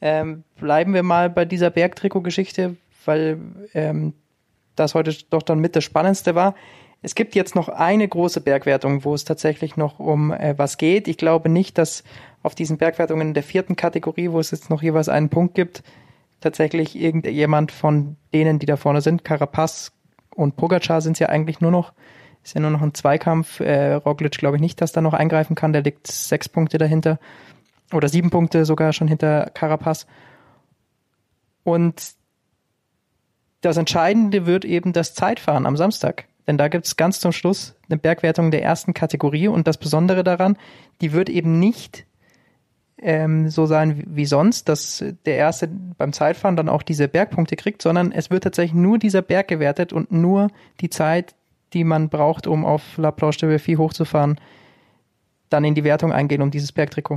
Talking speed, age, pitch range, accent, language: 180 wpm, 20-39, 150-175 Hz, German, German